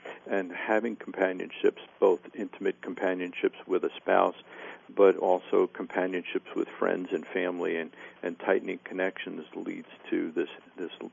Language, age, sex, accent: English, 50-69, male, American